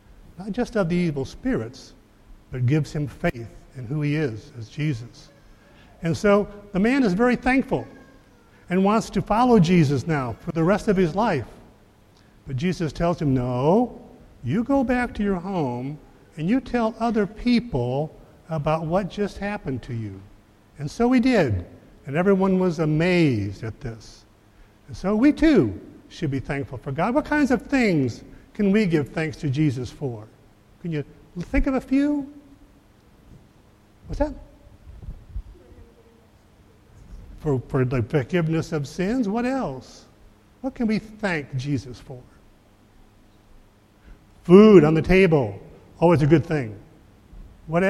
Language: English